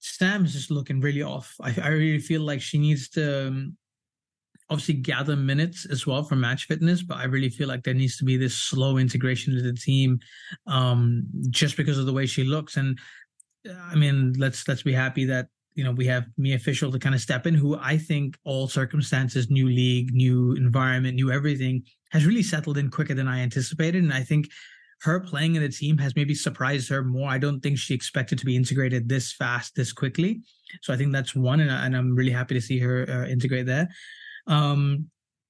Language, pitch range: English, 130-150 Hz